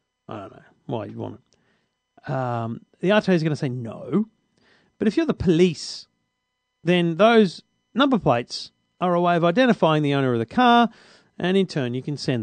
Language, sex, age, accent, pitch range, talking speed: English, male, 40-59, Australian, 135-210 Hz, 195 wpm